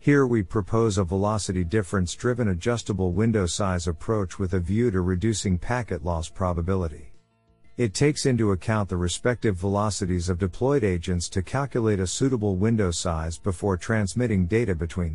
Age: 50-69